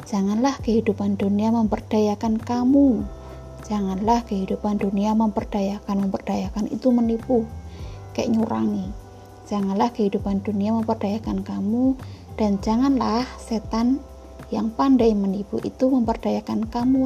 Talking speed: 100 wpm